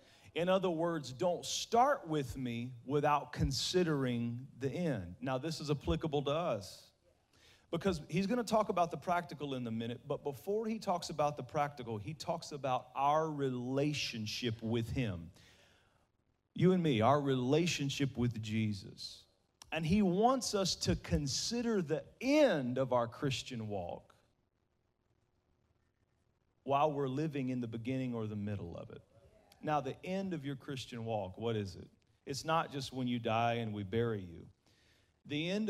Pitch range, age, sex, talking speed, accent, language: 115-150 Hz, 40-59, male, 160 wpm, American, English